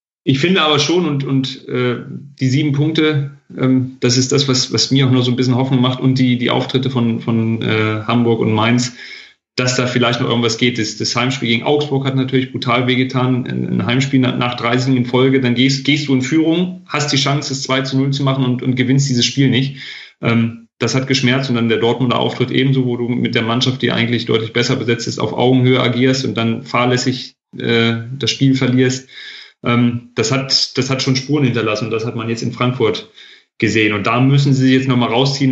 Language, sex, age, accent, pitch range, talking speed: German, male, 30-49, German, 115-130 Hz, 220 wpm